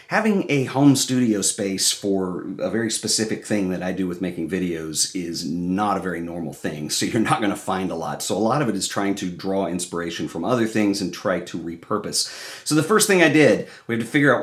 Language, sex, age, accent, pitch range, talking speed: English, male, 40-59, American, 95-125 Hz, 235 wpm